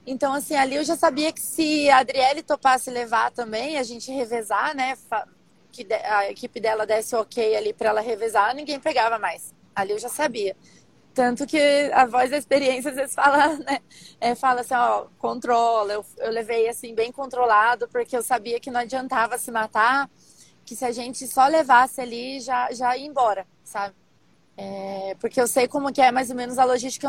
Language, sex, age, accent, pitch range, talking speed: Portuguese, female, 20-39, Brazilian, 235-270 Hz, 190 wpm